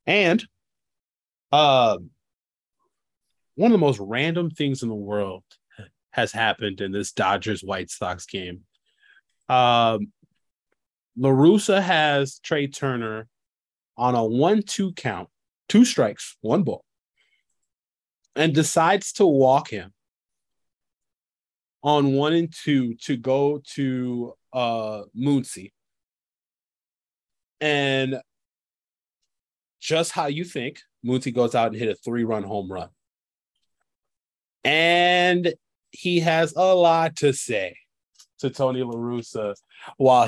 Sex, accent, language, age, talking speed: male, American, English, 20-39, 105 wpm